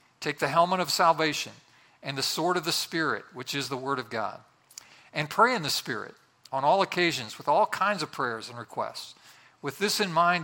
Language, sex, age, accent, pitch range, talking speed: English, male, 50-69, American, 130-170 Hz, 205 wpm